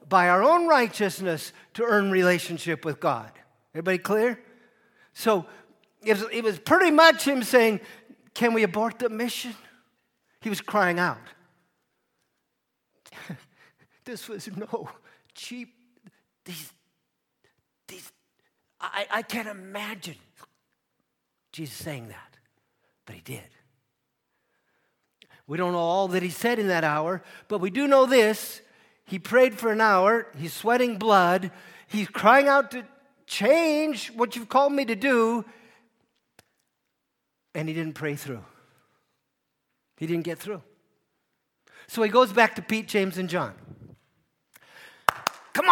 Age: 50-69